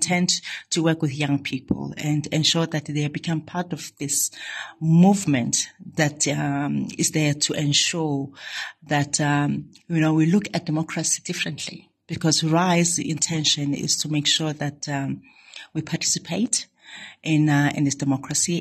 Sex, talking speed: female, 150 wpm